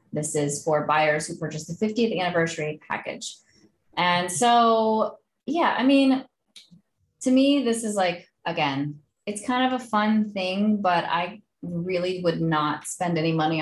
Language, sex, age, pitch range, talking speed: English, female, 20-39, 155-205 Hz, 155 wpm